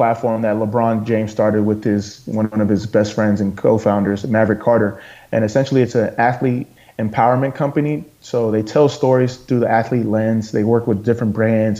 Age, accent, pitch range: 20-39, American, 105-120 Hz